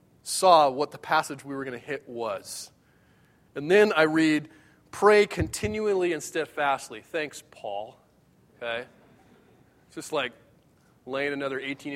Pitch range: 145-195 Hz